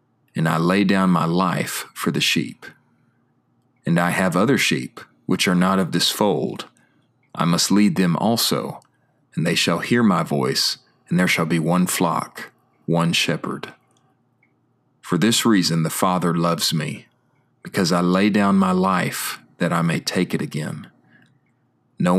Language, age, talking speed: English, 40-59, 160 wpm